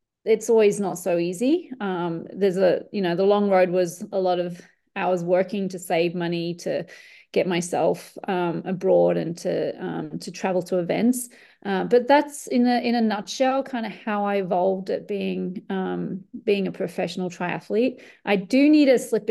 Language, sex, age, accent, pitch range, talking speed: English, female, 30-49, Australian, 180-215 Hz, 185 wpm